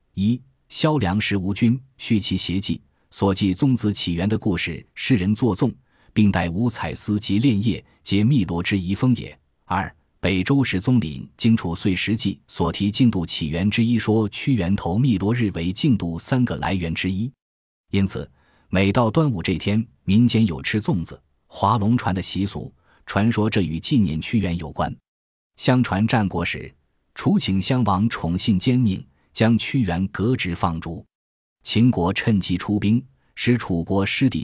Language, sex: Chinese, male